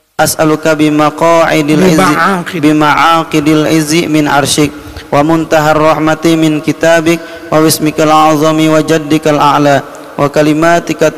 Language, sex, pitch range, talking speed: Malay, male, 150-160 Hz, 105 wpm